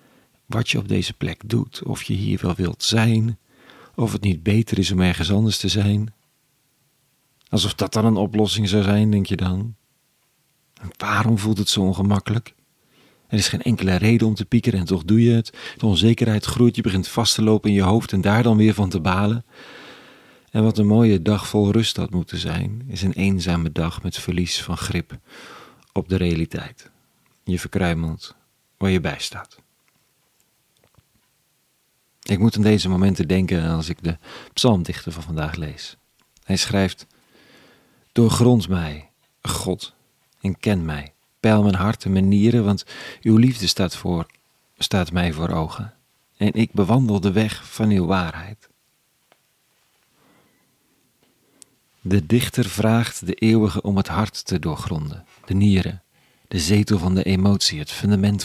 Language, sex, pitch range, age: Dutch, male, 90-110 Hz, 40-59